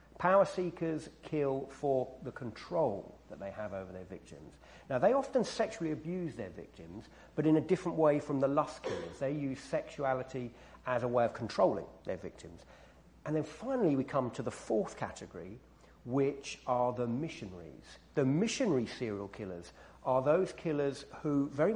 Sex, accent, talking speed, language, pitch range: male, British, 165 wpm, English, 115-155 Hz